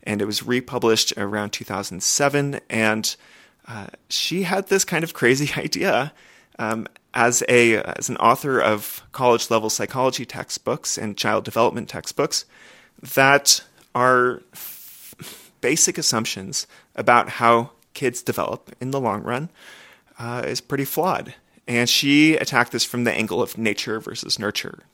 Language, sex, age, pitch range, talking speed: English, male, 30-49, 110-140 Hz, 135 wpm